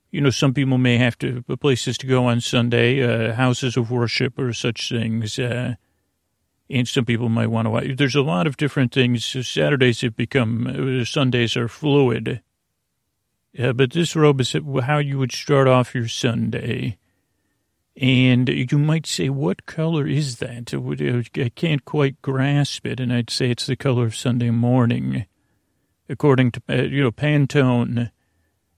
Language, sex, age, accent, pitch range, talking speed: English, male, 40-59, American, 115-135 Hz, 165 wpm